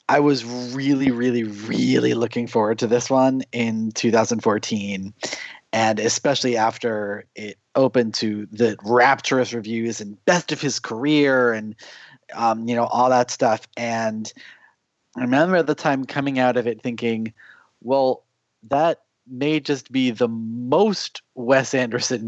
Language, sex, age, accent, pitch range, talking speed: English, male, 30-49, American, 115-145 Hz, 145 wpm